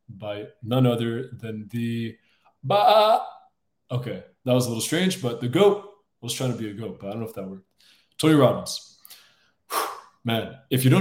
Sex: male